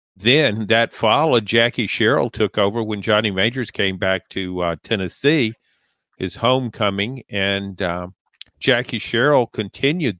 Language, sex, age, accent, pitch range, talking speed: English, male, 50-69, American, 100-130 Hz, 130 wpm